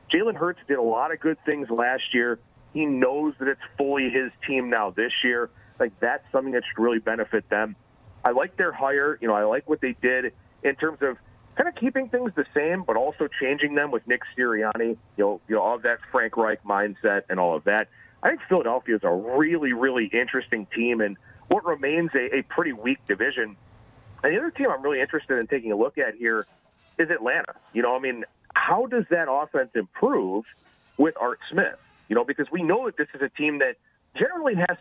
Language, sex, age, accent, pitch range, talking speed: English, male, 40-59, American, 115-150 Hz, 215 wpm